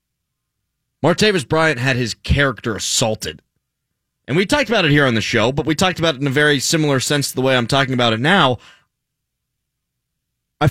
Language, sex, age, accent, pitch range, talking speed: English, male, 20-39, American, 115-150 Hz, 190 wpm